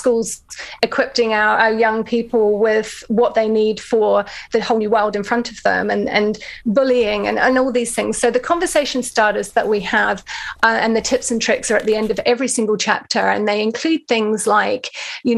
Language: English